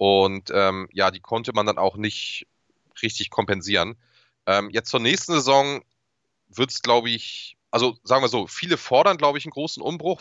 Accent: German